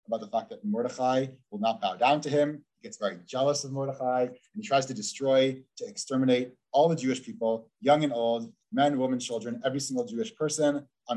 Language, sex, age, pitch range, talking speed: English, male, 30-49, 125-195 Hz, 210 wpm